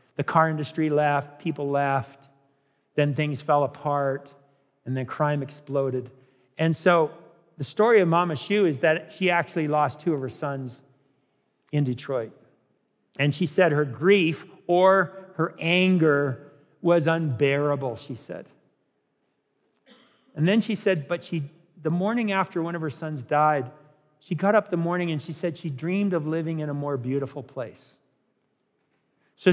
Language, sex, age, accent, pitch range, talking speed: English, male, 50-69, American, 135-170 Hz, 155 wpm